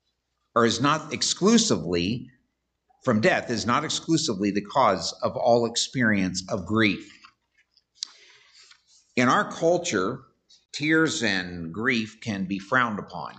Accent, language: American, English